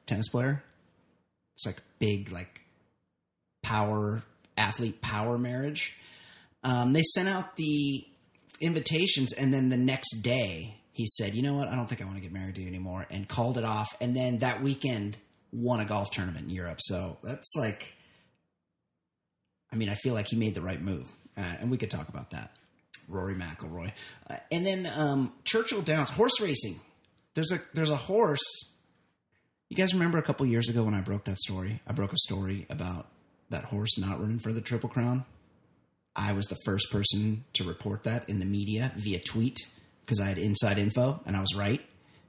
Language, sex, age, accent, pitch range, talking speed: English, male, 30-49, American, 100-130 Hz, 190 wpm